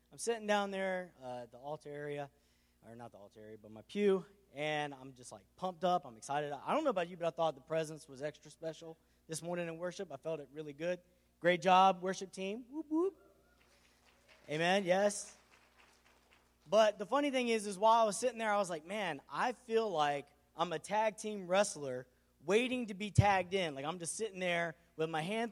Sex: male